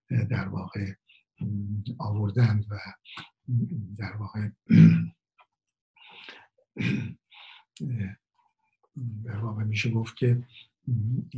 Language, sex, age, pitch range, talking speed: Persian, male, 60-79, 110-125 Hz, 55 wpm